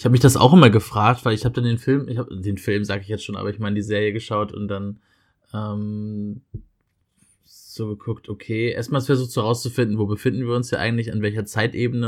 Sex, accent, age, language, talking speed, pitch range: male, German, 20-39, English, 230 wpm, 105-120 Hz